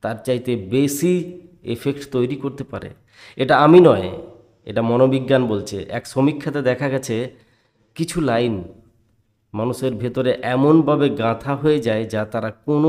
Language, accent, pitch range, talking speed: Bengali, native, 115-150 Hz, 105 wpm